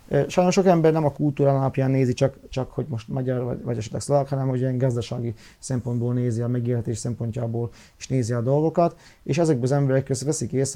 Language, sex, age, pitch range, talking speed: Hungarian, male, 30-49, 120-145 Hz, 205 wpm